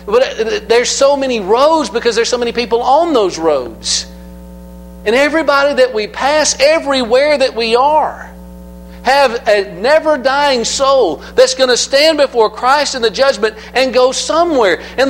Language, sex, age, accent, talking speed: English, male, 50-69, American, 155 wpm